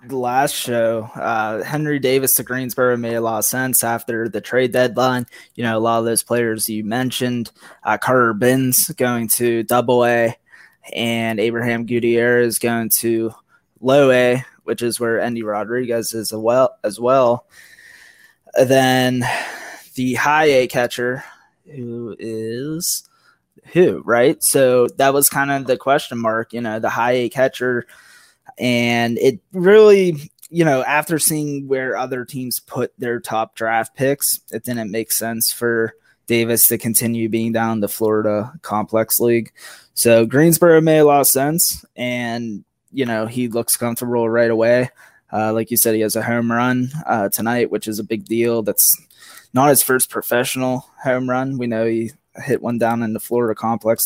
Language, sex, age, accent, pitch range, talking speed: English, male, 20-39, American, 115-130 Hz, 170 wpm